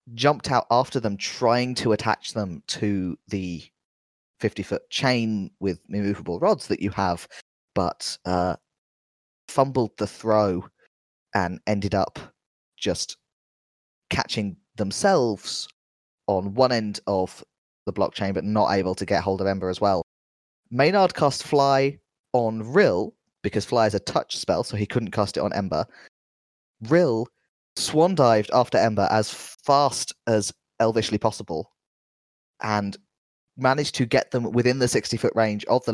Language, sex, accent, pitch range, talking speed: English, male, British, 95-125 Hz, 140 wpm